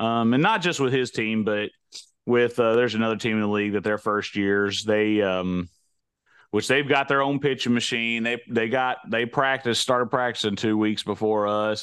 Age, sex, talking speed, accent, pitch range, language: 30-49, male, 205 wpm, American, 105-135 Hz, English